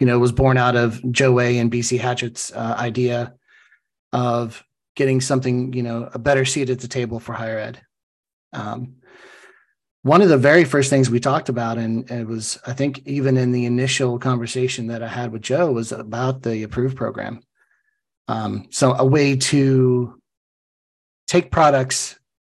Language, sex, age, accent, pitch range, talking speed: English, male, 30-49, American, 115-135 Hz, 170 wpm